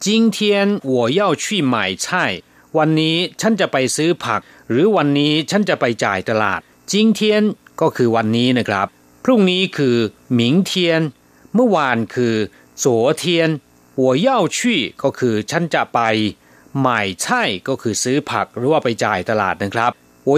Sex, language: male, Thai